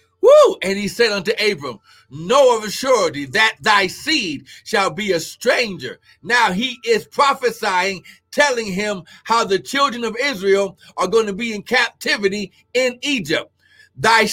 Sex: male